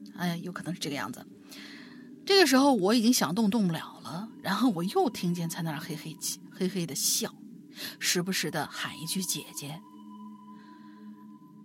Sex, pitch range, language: female, 175-260 Hz, Chinese